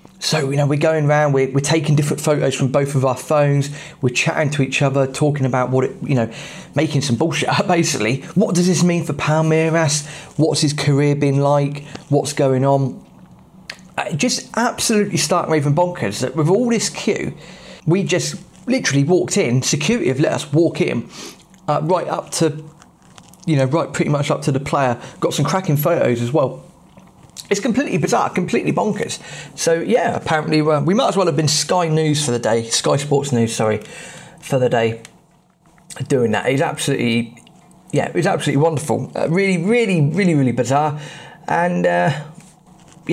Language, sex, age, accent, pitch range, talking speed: English, male, 30-49, British, 135-175 Hz, 180 wpm